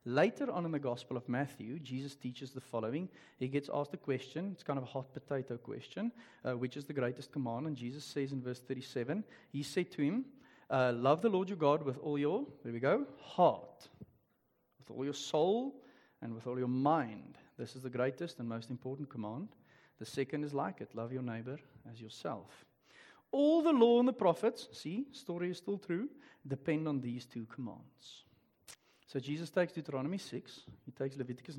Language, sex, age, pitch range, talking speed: English, male, 40-59, 125-170 Hz, 195 wpm